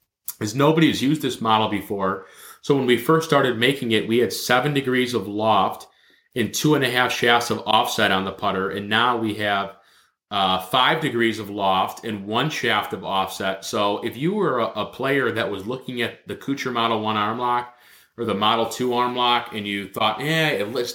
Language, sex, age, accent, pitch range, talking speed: English, male, 30-49, American, 105-125 Hz, 210 wpm